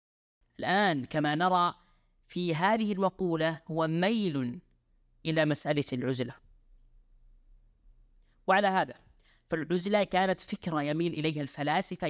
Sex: female